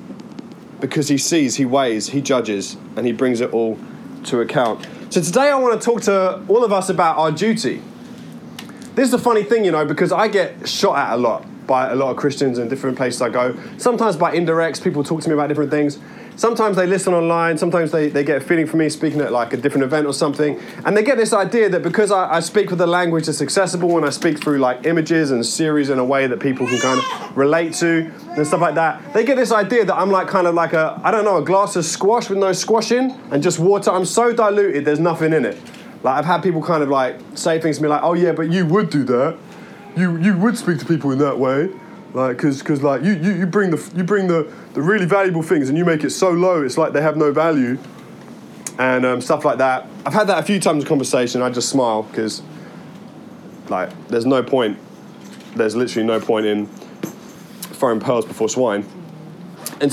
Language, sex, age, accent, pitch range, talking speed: English, male, 20-39, British, 145-205 Hz, 235 wpm